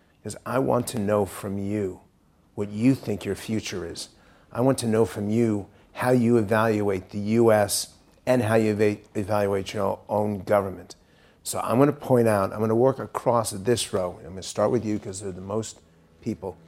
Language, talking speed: English, 195 wpm